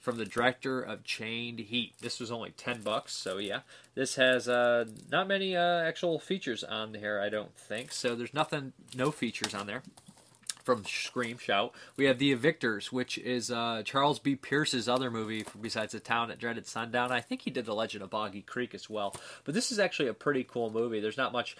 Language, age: English, 20-39